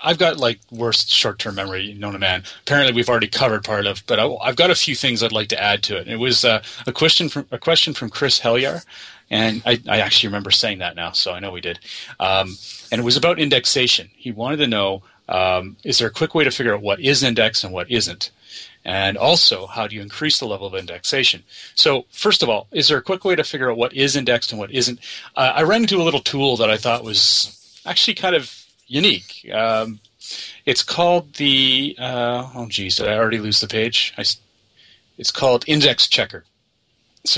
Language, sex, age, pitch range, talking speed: English, male, 30-49, 105-130 Hz, 225 wpm